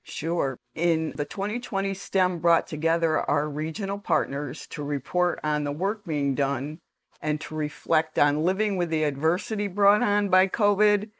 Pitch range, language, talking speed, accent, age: 160-200 Hz, English, 155 wpm, American, 50-69